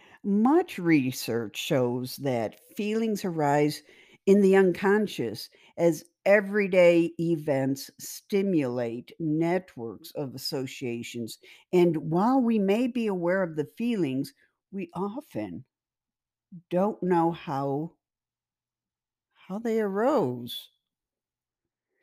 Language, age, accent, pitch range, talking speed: English, 60-79, American, 150-220 Hz, 90 wpm